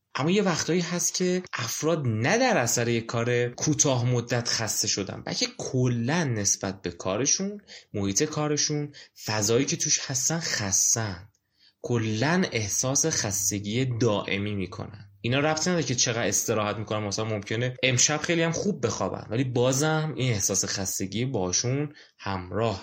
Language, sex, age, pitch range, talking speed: Persian, male, 20-39, 105-150 Hz, 140 wpm